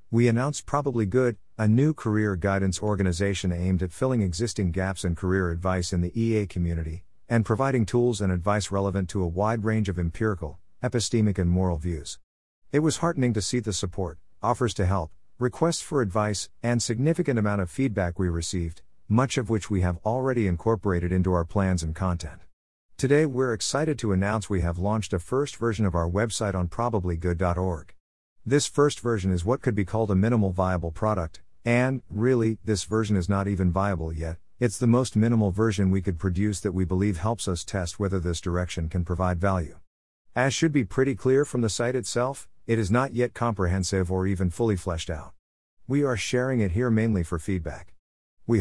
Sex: male